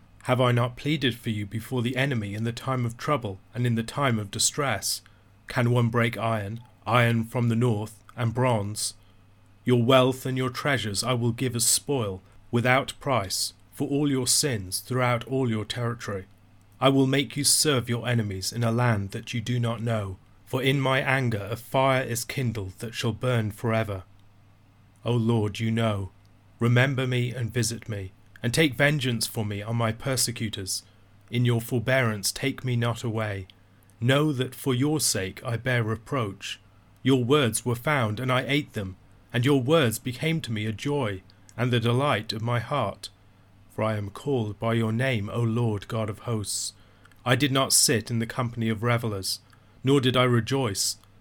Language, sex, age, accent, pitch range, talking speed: English, male, 30-49, British, 105-125 Hz, 185 wpm